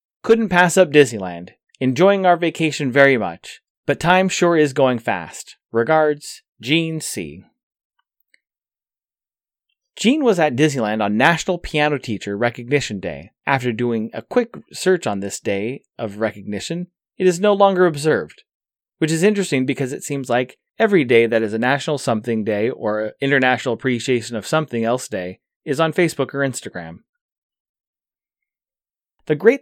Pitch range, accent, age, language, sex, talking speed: 115-165 Hz, American, 30-49, English, male, 145 wpm